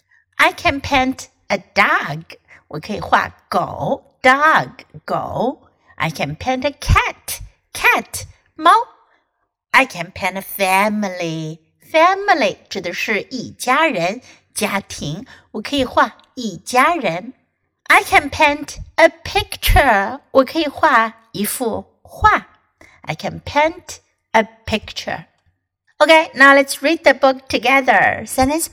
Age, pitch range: 60-79, 195-300 Hz